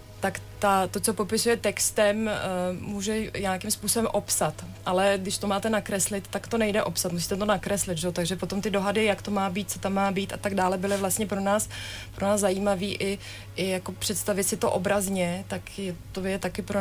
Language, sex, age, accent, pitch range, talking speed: Czech, female, 30-49, native, 185-210 Hz, 205 wpm